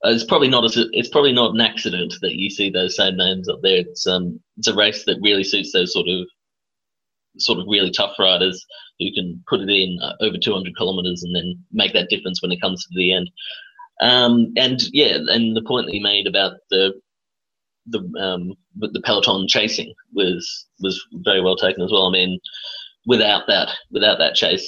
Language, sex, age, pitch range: English, male, 30-49, 90-115 Hz